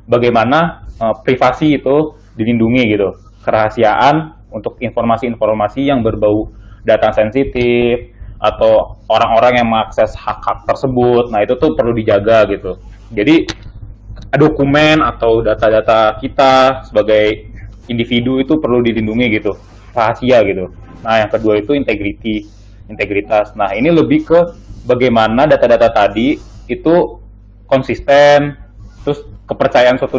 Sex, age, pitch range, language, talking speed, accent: male, 20-39, 105-125 Hz, Indonesian, 110 wpm, native